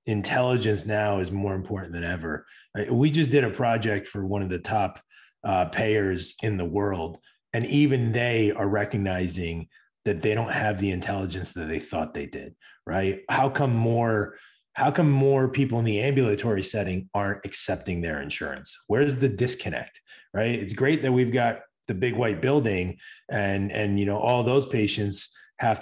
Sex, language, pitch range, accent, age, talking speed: male, English, 95-120 Hz, American, 30-49, 175 wpm